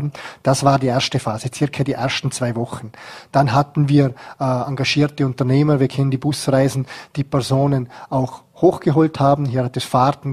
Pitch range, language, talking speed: 130-150 Hz, German, 170 wpm